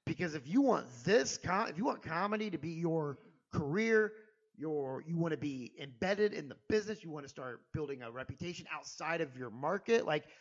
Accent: American